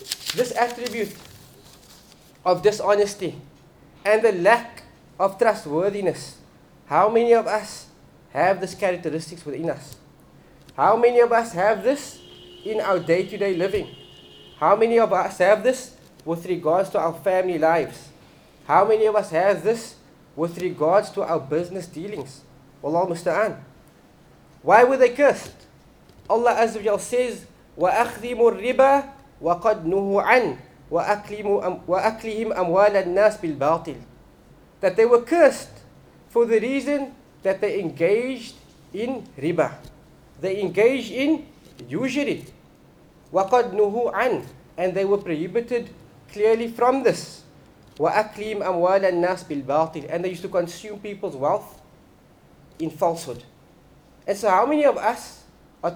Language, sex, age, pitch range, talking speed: English, male, 20-39, 170-230 Hz, 120 wpm